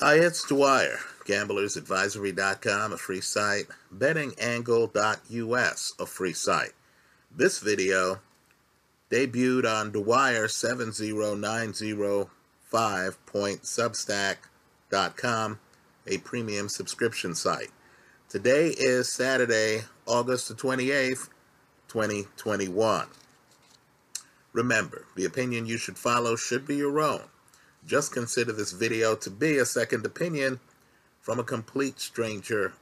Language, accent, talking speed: English, American, 90 wpm